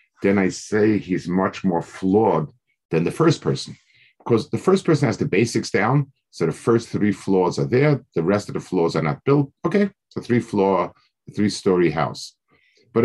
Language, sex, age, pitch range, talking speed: English, male, 50-69, 90-120 Hz, 185 wpm